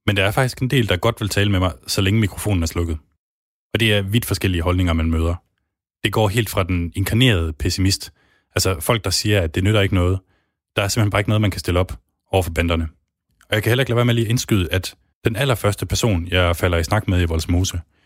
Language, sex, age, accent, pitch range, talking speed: Danish, male, 20-39, native, 85-105 Hz, 255 wpm